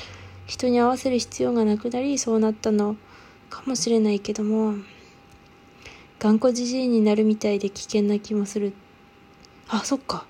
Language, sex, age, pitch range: Japanese, female, 20-39, 210-260 Hz